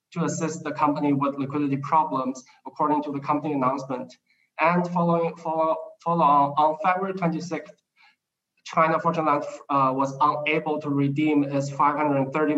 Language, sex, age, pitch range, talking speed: English, male, 20-39, 140-160 Hz, 145 wpm